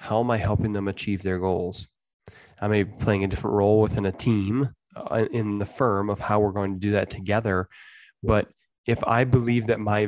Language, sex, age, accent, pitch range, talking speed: English, male, 20-39, American, 100-115 Hz, 210 wpm